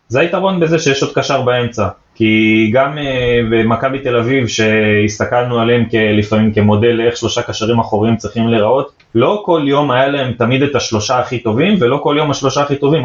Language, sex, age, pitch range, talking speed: Hebrew, male, 20-39, 110-135 Hz, 175 wpm